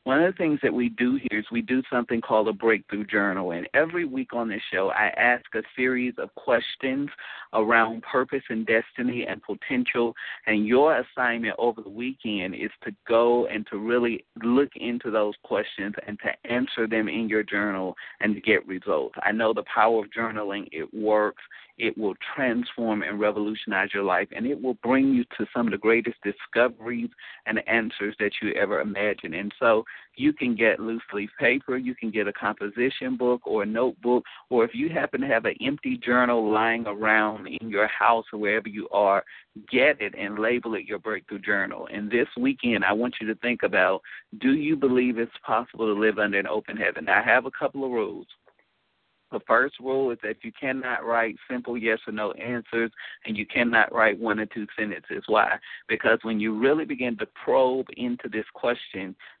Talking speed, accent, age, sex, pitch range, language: 195 wpm, American, 50-69, male, 110-125 Hz, English